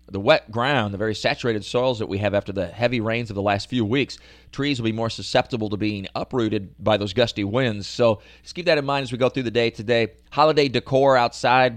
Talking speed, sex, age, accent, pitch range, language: 240 wpm, male, 30-49, American, 100-120 Hz, English